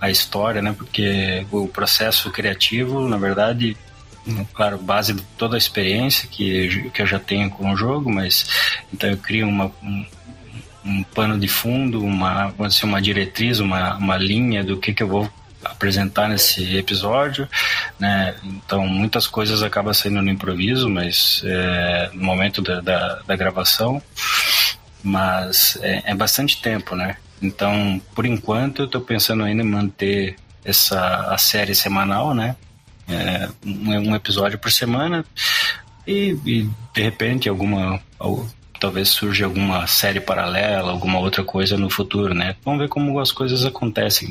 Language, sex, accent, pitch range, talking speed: Portuguese, male, Brazilian, 95-110 Hz, 155 wpm